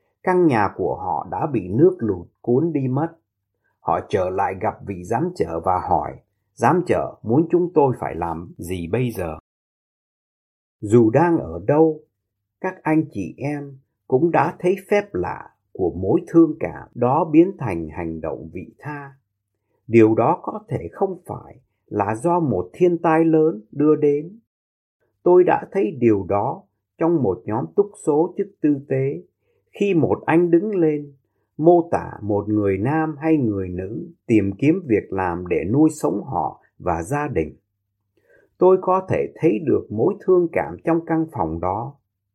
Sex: male